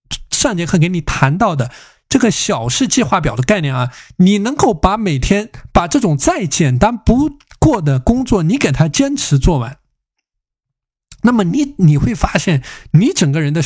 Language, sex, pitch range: Chinese, male, 140-200 Hz